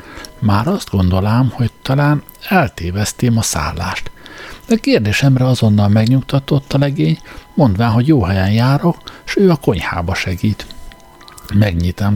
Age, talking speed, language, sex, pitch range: 60-79, 125 wpm, Hungarian, male, 95-130 Hz